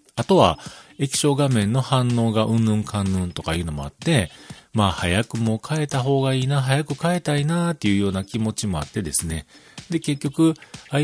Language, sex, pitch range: Japanese, male, 95-150 Hz